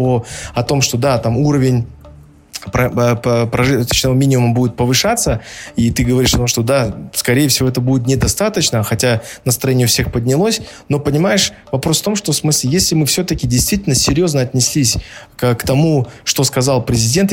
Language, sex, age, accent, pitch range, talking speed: Russian, male, 20-39, native, 120-145 Hz, 165 wpm